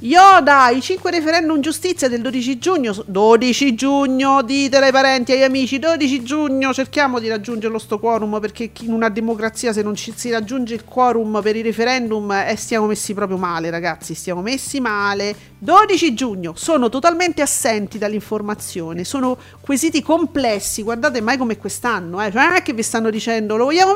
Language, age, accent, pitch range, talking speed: Italian, 40-59, native, 215-300 Hz, 175 wpm